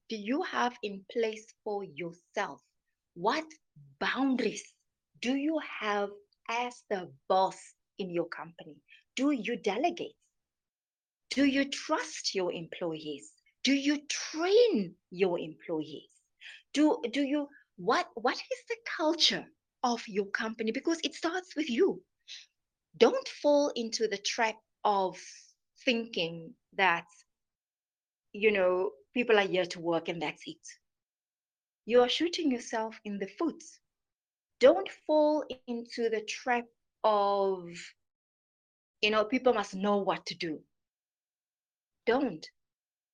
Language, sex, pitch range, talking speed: English, female, 205-305 Hz, 120 wpm